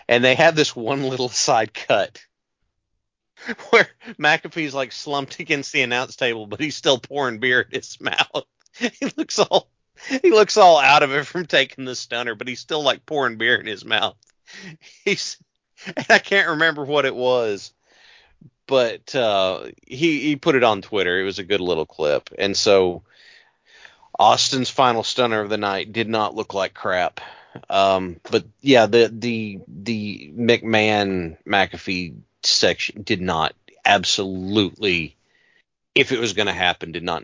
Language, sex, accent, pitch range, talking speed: English, male, American, 105-150 Hz, 165 wpm